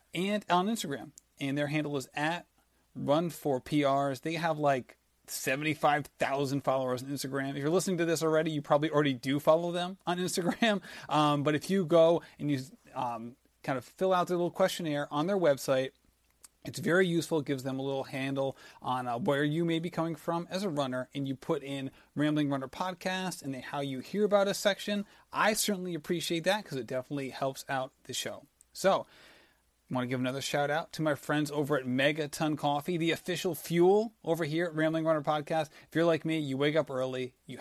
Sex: male